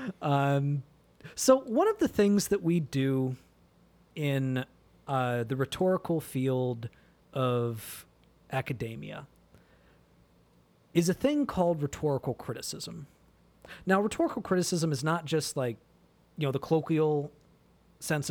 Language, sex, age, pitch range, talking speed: English, male, 40-59, 135-185 Hz, 110 wpm